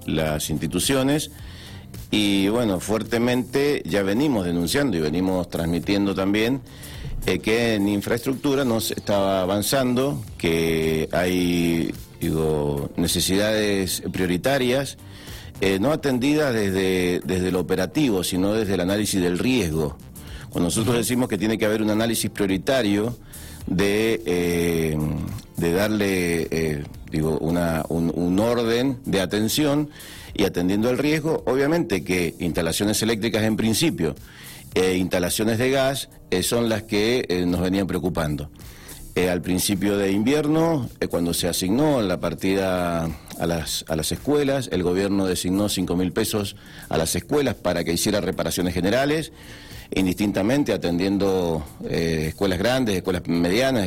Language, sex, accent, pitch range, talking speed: Spanish, male, Argentinian, 85-110 Hz, 135 wpm